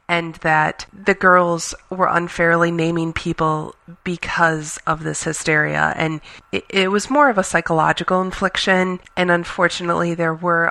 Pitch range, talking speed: 165-200 Hz, 140 wpm